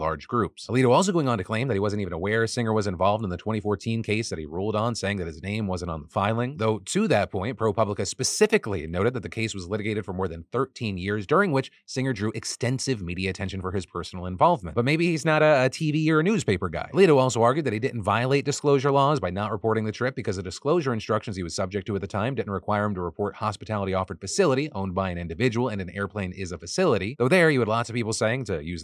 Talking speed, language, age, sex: 260 wpm, English, 30-49, male